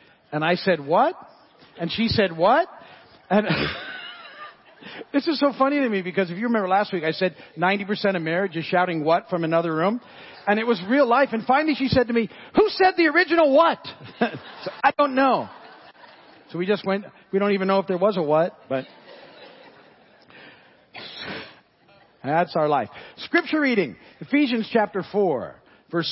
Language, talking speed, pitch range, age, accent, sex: English, 170 wpm, 165-220 Hz, 50-69, American, male